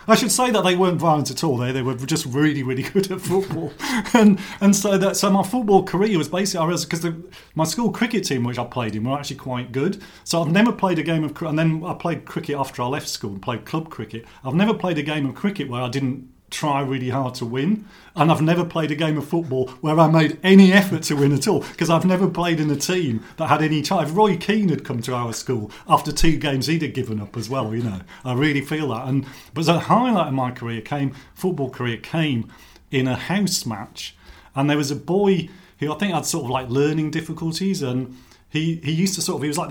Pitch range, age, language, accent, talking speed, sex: 130-175 Hz, 40-59, English, British, 250 wpm, male